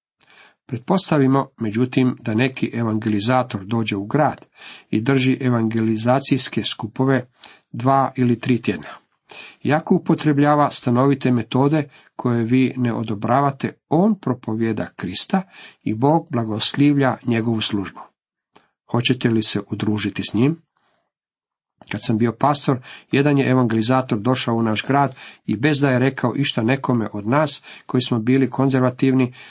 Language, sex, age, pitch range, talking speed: Croatian, male, 50-69, 115-140 Hz, 125 wpm